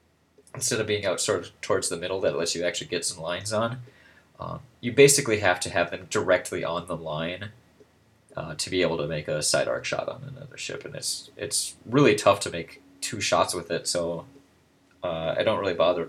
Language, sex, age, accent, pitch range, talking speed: English, male, 20-39, American, 90-115 Hz, 215 wpm